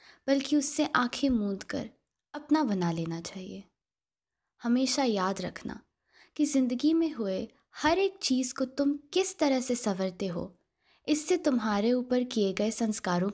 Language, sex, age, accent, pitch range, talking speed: Hindi, female, 20-39, native, 195-275 Hz, 145 wpm